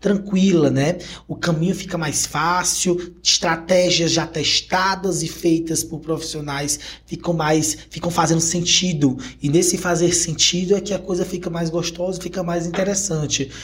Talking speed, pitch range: 145 wpm, 150-190 Hz